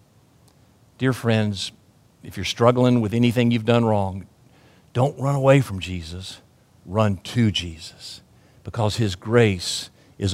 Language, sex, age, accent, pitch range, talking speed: English, male, 50-69, American, 100-135 Hz, 130 wpm